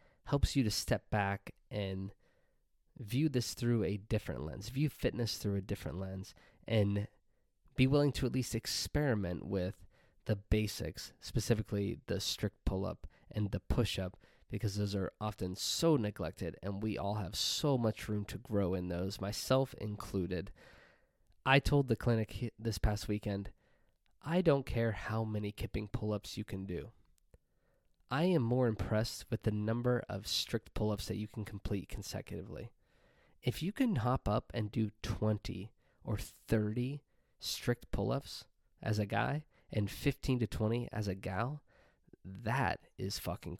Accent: American